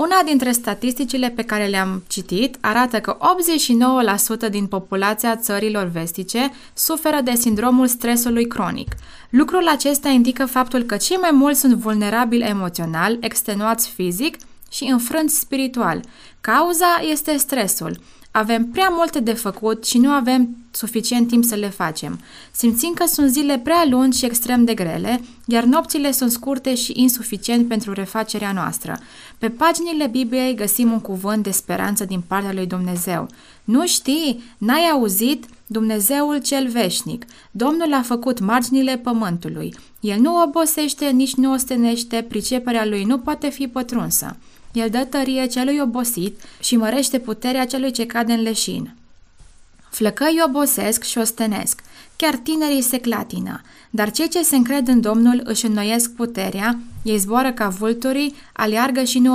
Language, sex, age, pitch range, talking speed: Romanian, female, 20-39, 215-270 Hz, 145 wpm